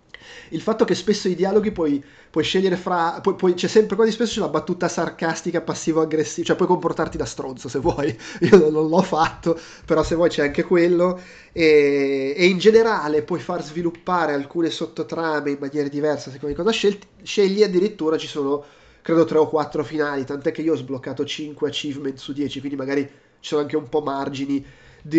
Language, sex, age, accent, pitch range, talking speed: Italian, male, 20-39, native, 145-170 Hz, 195 wpm